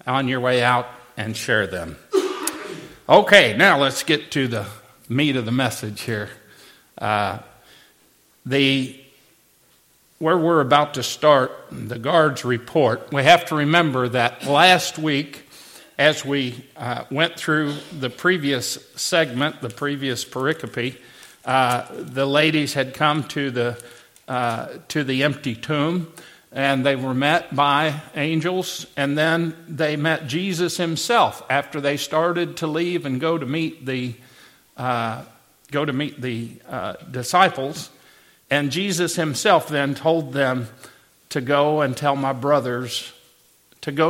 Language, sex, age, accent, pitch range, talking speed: English, male, 50-69, American, 130-160 Hz, 135 wpm